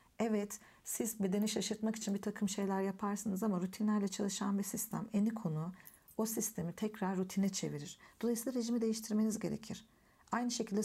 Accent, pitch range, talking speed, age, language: native, 180-220 Hz, 150 wpm, 50-69, Turkish